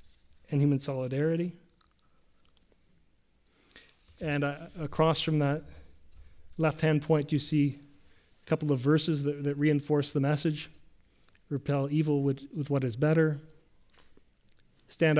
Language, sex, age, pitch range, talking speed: English, male, 30-49, 140-160 Hz, 115 wpm